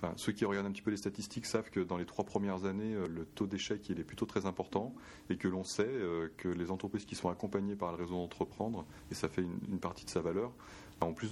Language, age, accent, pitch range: French, 30-49, French, 85-100 Hz